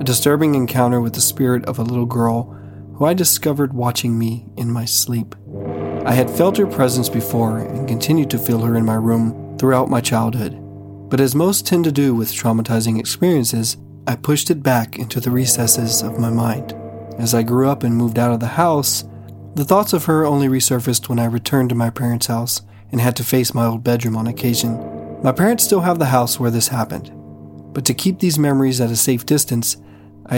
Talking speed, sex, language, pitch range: 205 wpm, male, English, 115-135 Hz